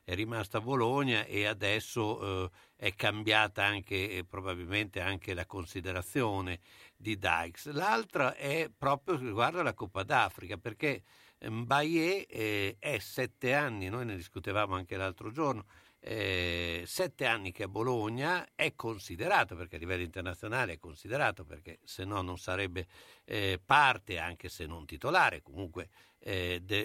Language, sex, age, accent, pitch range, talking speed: Italian, male, 60-79, native, 95-120 Hz, 140 wpm